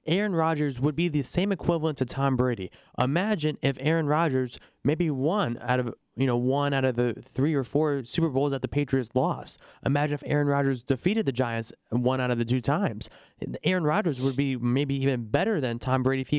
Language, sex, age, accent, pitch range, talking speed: English, male, 20-39, American, 135-175 Hz, 210 wpm